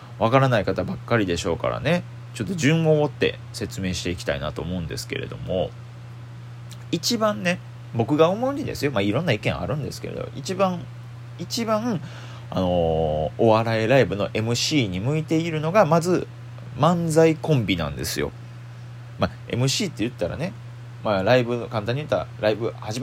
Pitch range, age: 105-130 Hz, 30-49